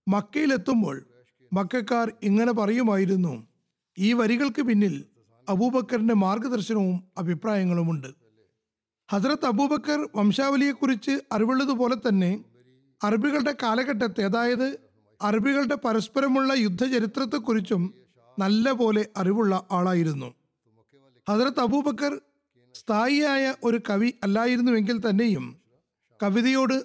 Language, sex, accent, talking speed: Malayalam, male, native, 70 wpm